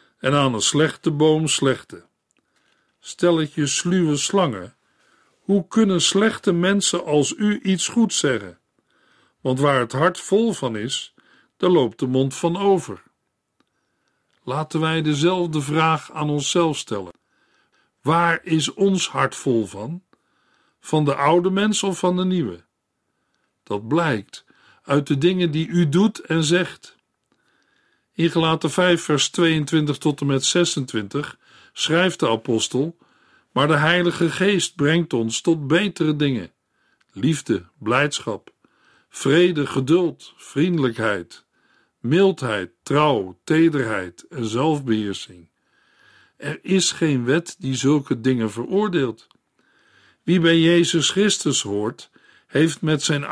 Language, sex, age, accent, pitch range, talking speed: Dutch, male, 50-69, Dutch, 140-180 Hz, 125 wpm